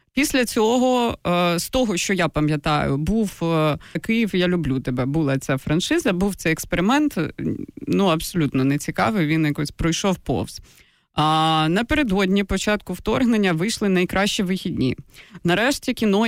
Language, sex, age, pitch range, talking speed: Ukrainian, female, 20-39, 165-205 Hz, 130 wpm